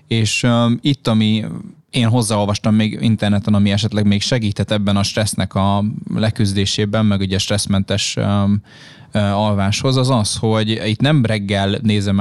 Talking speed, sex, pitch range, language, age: 135 wpm, male, 100-120 Hz, Hungarian, 20-39